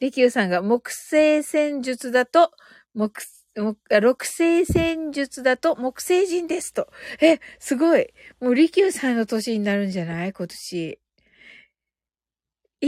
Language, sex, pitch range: Japanese, female, 230-330 Hz